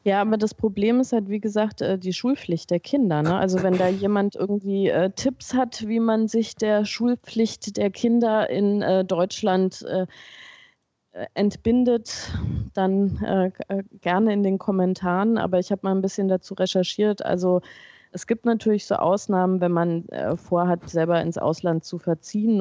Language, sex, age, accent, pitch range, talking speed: German, female, 20-39, German, 160-195 Hz, 150 wpm